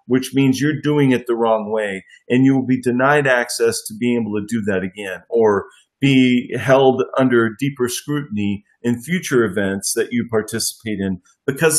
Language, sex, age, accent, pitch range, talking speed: English, male, 40-59, American, 120-150 Hz, 180 wpm